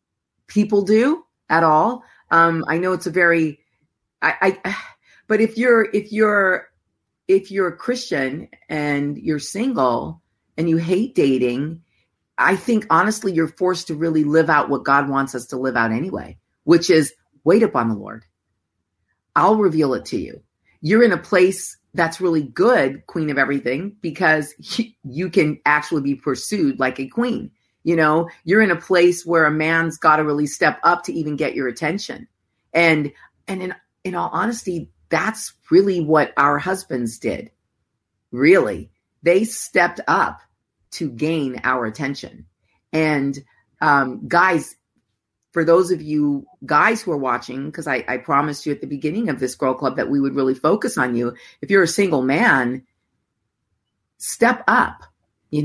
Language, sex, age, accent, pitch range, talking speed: English, female, 40-59, American, 130-180 Hz, 165 wpm